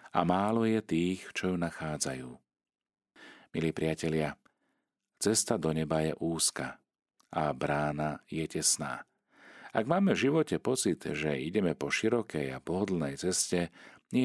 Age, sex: 40-59, male